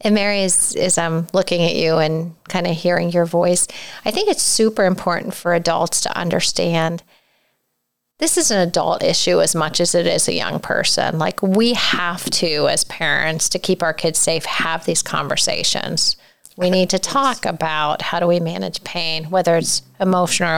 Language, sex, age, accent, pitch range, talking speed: English, female, 40-59, American, 170-200 Hz, 190 wpm